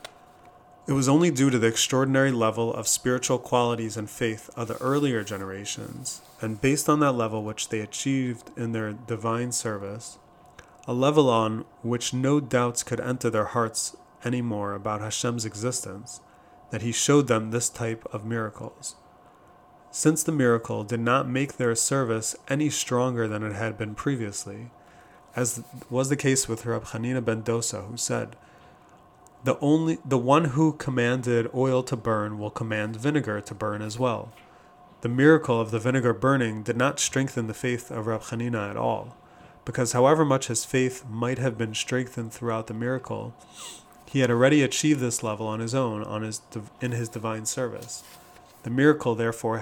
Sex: male